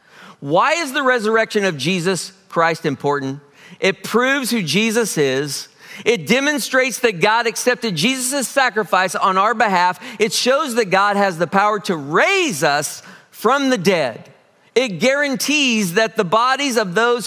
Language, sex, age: English, male, 50-69